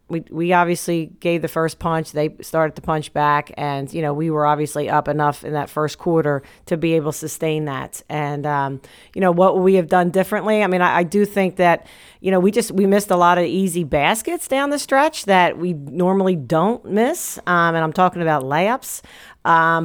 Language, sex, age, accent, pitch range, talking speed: English, female, 40-59, American, 155-180 Hz, 225 wpm